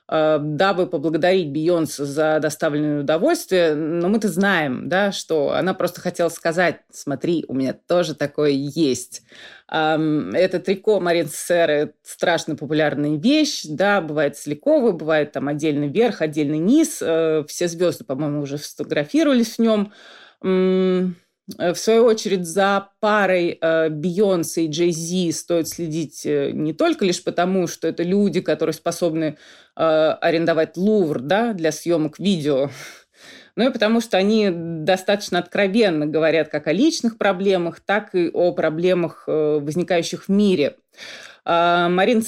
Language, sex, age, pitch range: Russian, female, 20-39, 155-195 Hz